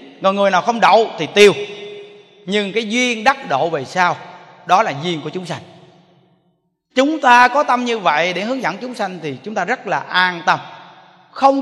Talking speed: 195 wpm